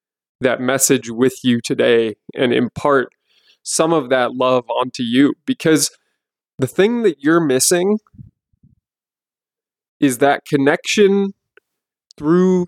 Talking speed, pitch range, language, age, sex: 110 wpm, 130-175 Hz, English, 20-39, male